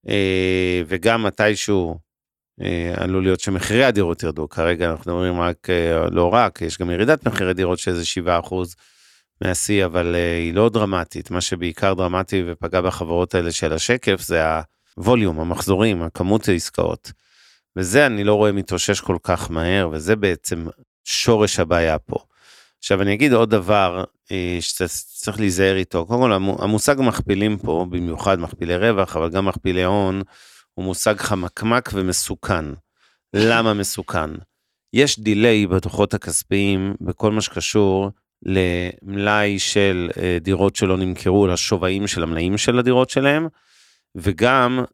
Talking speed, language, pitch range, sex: 130 wpm, Hebrew, 90-105 Hz, male